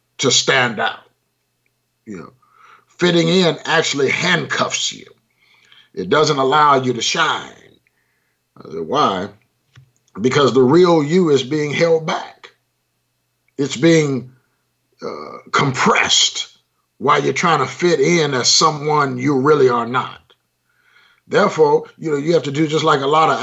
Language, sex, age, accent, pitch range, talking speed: English, male, 50-69, American, 135-185 Hz, 140 wpm